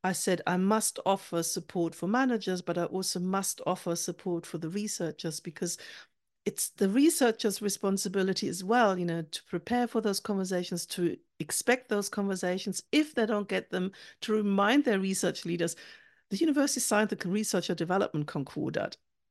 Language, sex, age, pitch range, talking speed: English, female, 60-79, 180-230 Hz, 160 wpm